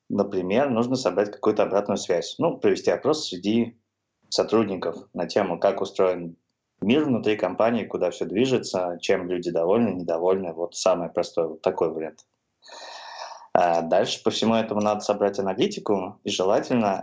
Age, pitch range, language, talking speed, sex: 20-39, 90-110 Hz, Russian, 140 wpm, male